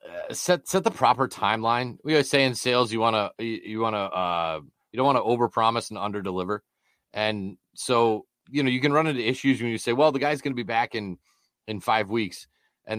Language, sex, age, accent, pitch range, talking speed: English, male, 30-49, American, 95-115 Hz, 215 wpm